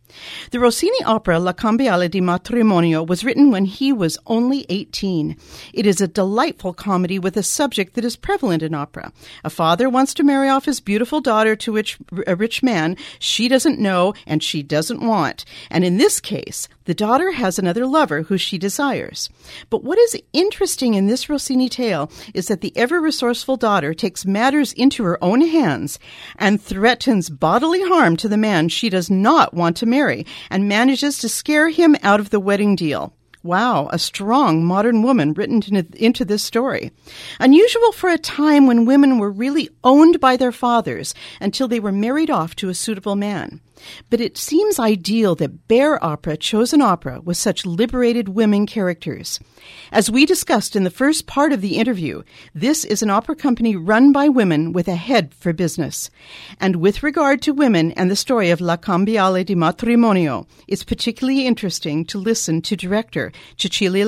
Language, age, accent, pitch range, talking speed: English, 50-69, American, 180-255 Hz, 180 wpm